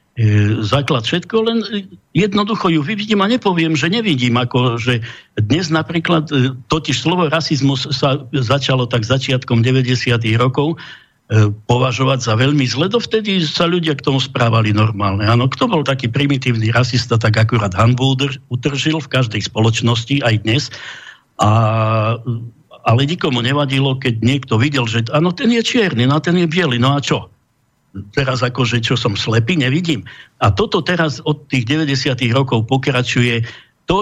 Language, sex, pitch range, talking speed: Slovak, male, 120-155 Hz, 150 wpm